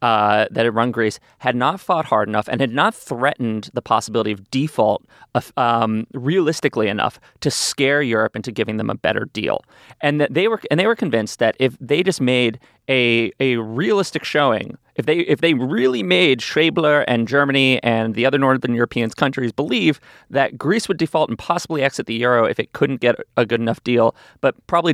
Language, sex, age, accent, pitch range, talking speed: English, male, 30-49, American, 115-145 Hz, 195 wpm